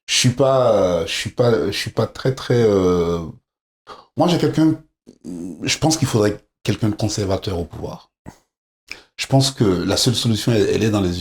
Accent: French